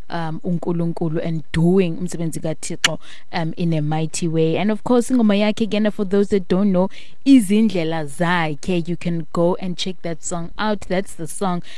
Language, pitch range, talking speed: English, 160-190 Hz, 155 wpm